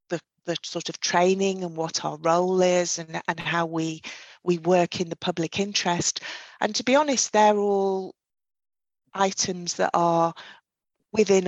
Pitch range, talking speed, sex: 170-190 Hz, 155 wpm, female